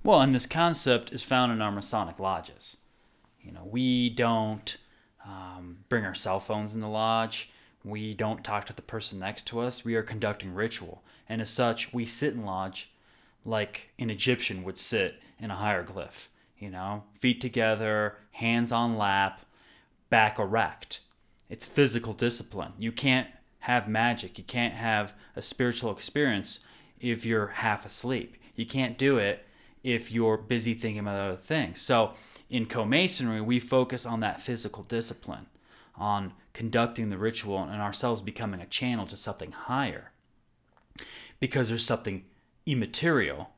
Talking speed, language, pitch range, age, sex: 155 wpm, English, 105-125 Hz, 20-39, male